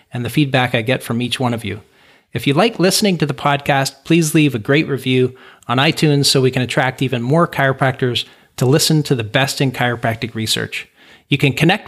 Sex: male